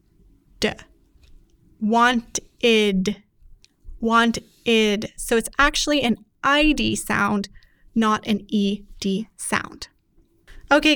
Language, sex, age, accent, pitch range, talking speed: English, female, 20-39, American, 205-250 Hz, 70 wpm